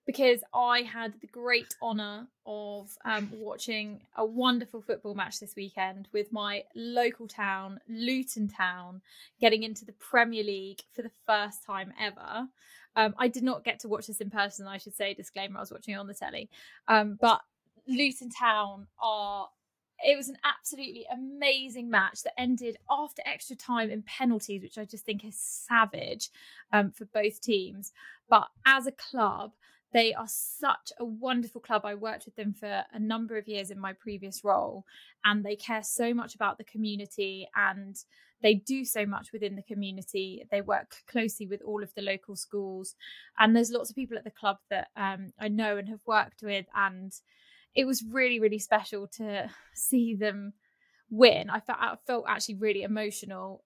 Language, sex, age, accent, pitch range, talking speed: English, female, 20-39, British, 200-235 Hz, 180 wpm